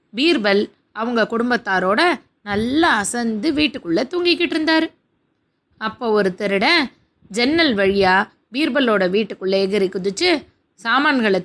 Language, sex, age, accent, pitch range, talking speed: Tamil, female, 20-39, native, 200-285 Hz, 95 wpm